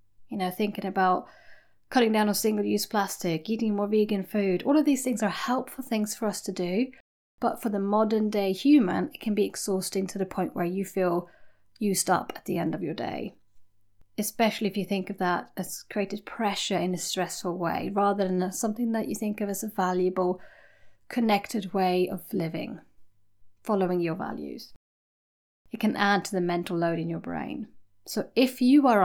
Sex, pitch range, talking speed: female, 180-220 Hz, 190 wpm